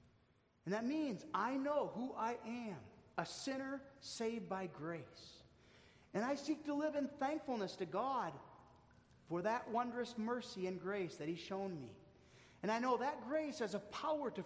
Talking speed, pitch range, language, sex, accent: 170 wpm, 160-225 Hz, English, male, American